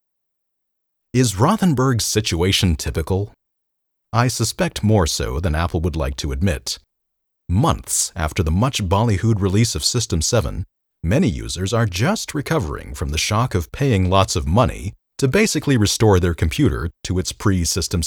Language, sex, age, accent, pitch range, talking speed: English, male, 40-59, American, 85-120 Hz, 145 wpm